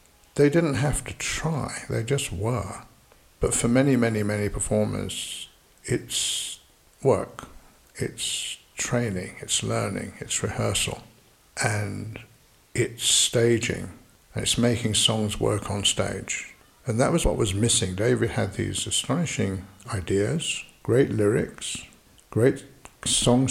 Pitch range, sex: 100-125 Hz, male